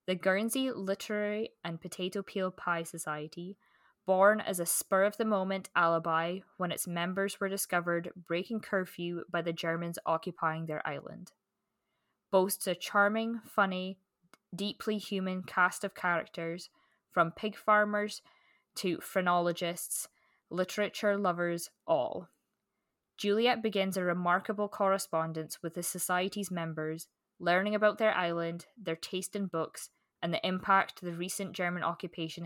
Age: 20-39